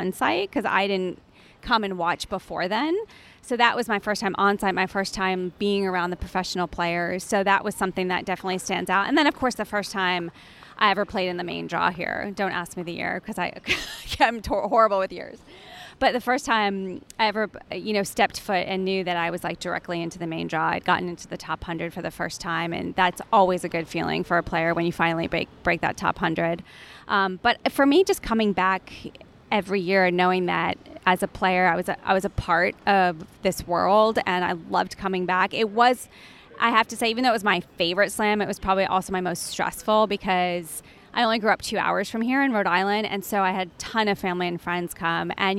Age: 20-39